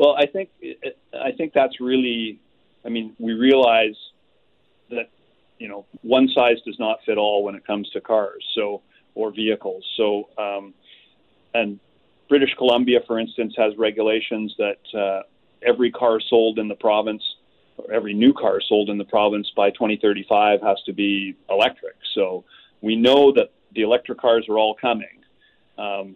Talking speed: 165 wpm